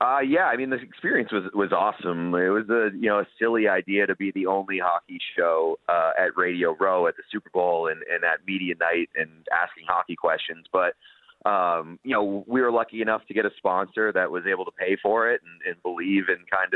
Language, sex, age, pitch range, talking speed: English, male, 30-49, 90-110 Hz, 230 wpm